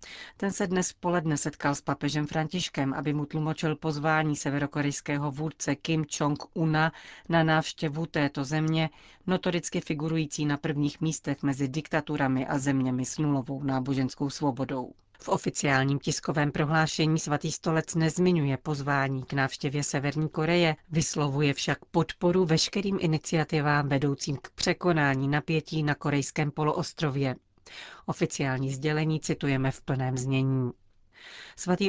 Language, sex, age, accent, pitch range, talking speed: Czech, female, 40-59, native, 140-160 Hz, 125 wpm